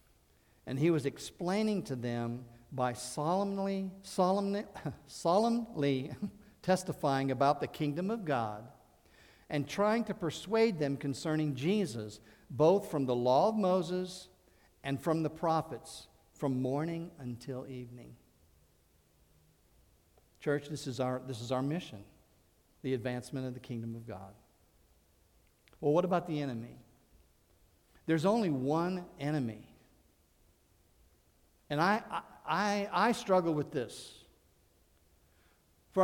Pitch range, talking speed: 115-175 Hz, 115 wpm